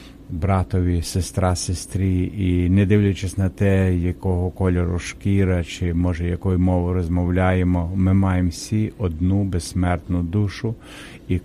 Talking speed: 120 wpm